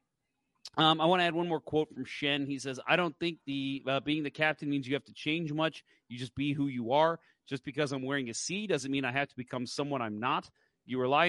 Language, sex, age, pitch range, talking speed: English, male, 30-49, 125-155 Hz, 260 wpm